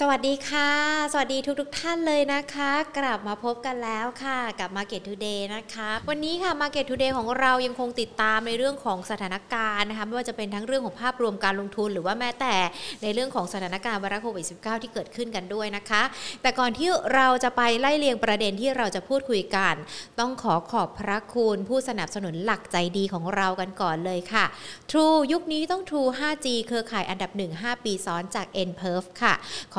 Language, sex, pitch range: Thai, female, 200-260 Hz